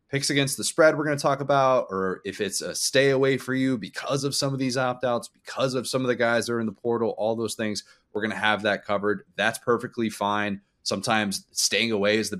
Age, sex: 30-49, male